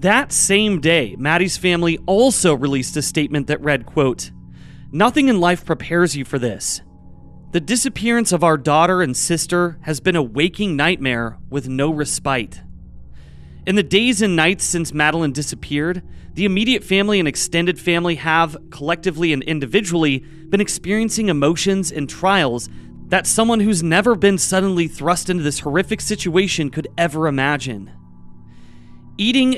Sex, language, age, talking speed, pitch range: male, English, 30-49, 145 wpm, 145-190 Hz